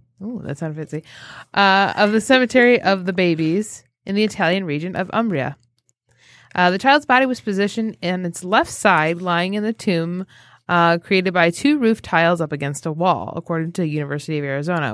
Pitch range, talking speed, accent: 170-225 Hz, 190 wpm, American